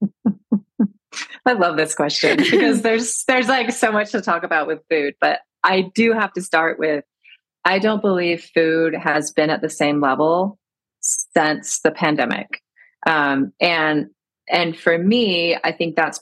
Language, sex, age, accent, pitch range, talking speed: English, female, 30-49, American, 160-210 Hz, 160 wpm